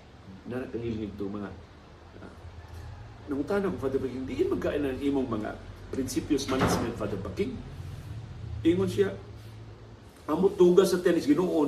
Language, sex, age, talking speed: Filipino, male, 50-69, 130 wpm